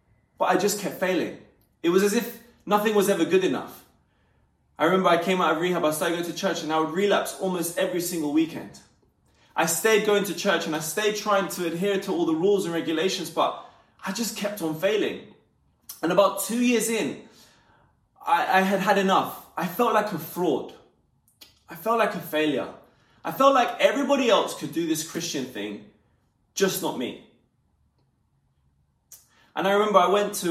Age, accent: 20-39, British